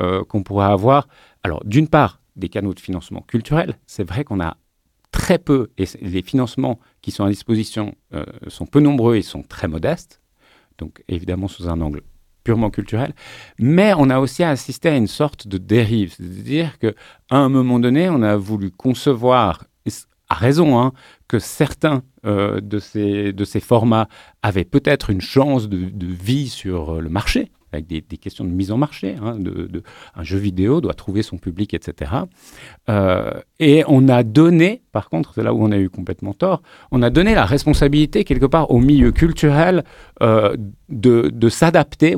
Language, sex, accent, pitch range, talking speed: French, male, French, 95-135 Hz, 180 wpm